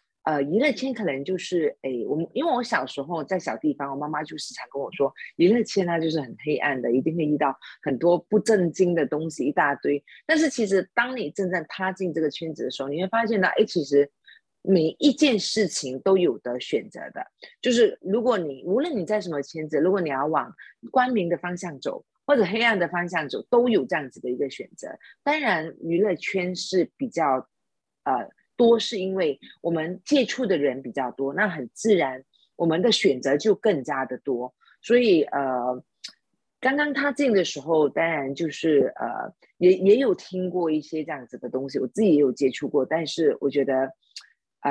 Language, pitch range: Chinese, 145-220 Hz